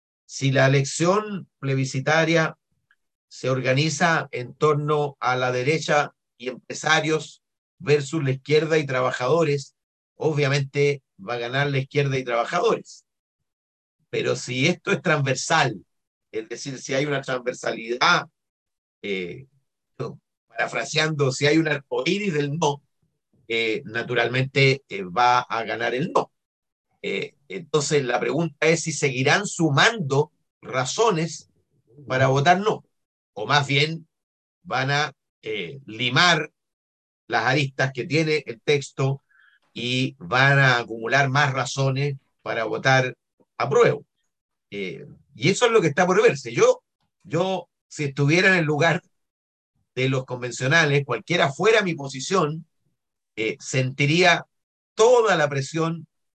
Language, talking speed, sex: Spanish, 125 wpm, male